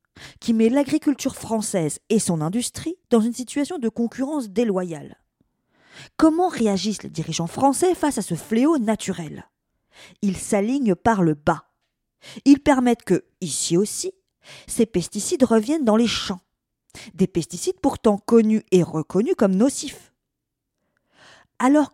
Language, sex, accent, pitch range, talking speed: French, female, French, 190-265 Hz, 130 wpm